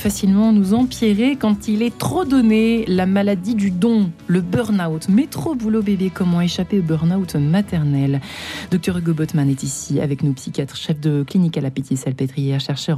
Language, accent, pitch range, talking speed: French, French, 150-200 Hz, 175 wpm